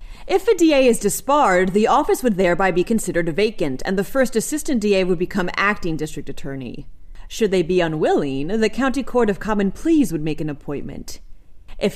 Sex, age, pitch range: female, 30-49, 170-245 Hz